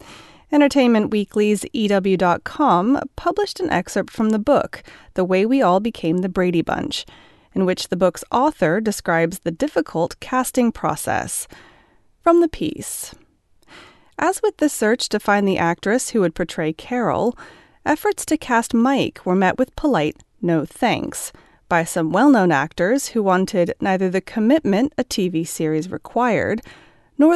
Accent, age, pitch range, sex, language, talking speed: American, 30-49, 180-265 Hz, female, English, 145 wpm